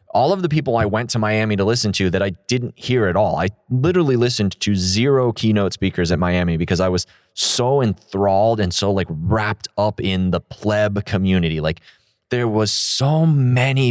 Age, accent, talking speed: 20-39, American, 195 wpm